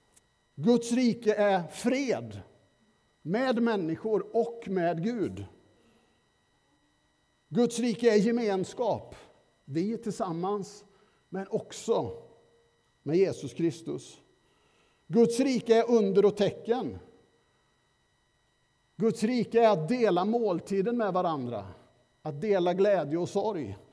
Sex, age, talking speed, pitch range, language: male, 50-69, 100 wpm, 170-220 Hz, Swedish